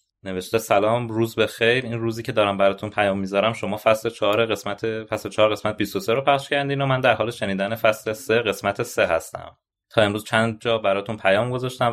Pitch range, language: 95-115 Hz, Persian